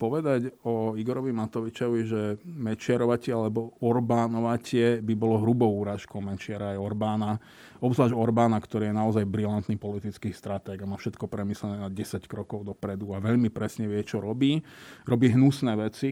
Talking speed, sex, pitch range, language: 150 wpm, male, 110-130 Hz, Slovak